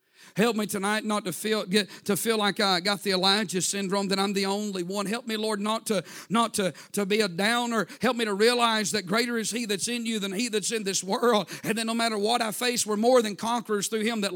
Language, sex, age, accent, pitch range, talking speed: English, male, 50-69, American, 215-270 Hz, 260 wpm